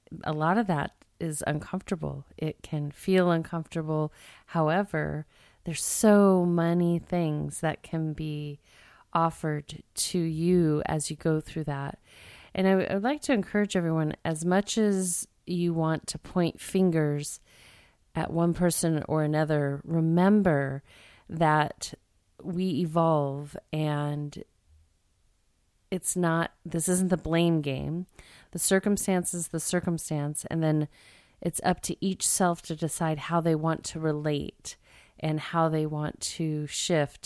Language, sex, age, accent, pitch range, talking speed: English, female, 30-49, American, 150-175 Hz, 135 wpm